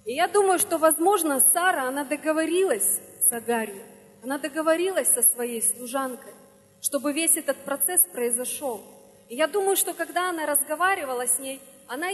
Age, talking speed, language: 30-49, 150 wpm, Russian